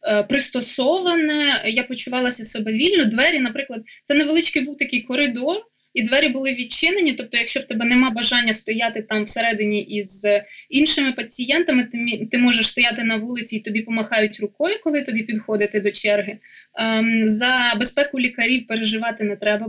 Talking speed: 145 wpm